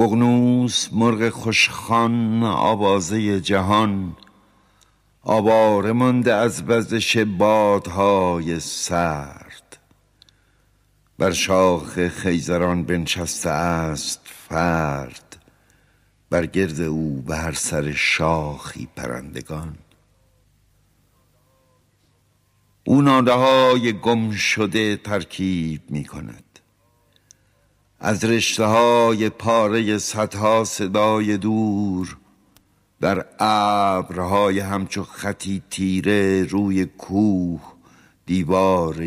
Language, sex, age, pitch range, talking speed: Persian, male, 60-79, 90-115 Hz, 70 wpm